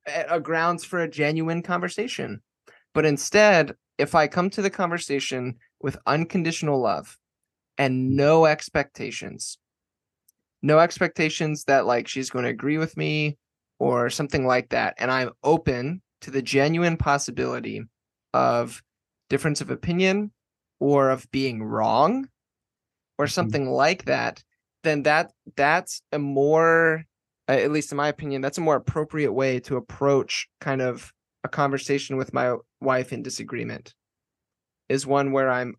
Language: English